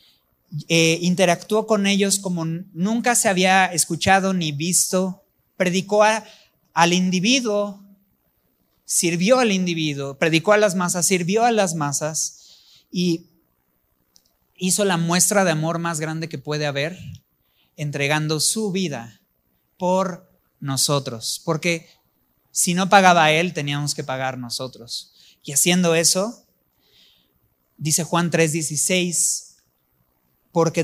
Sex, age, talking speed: male, 30-49, 115 wpm